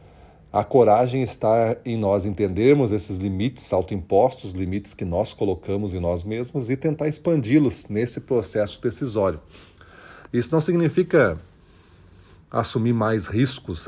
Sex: male